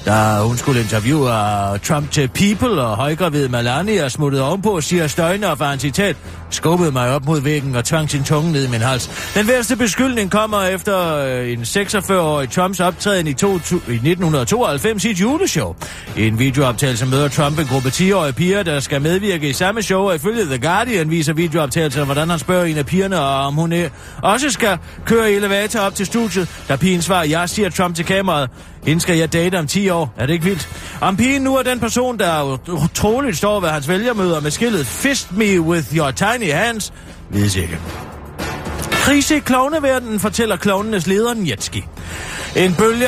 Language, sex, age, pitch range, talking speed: Danish, male, 30-49, 135-195 Hz, 185 wpm